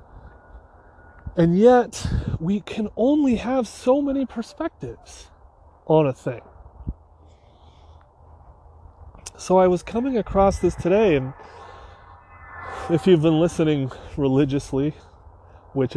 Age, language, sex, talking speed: 30-49, English, male, 100 wpm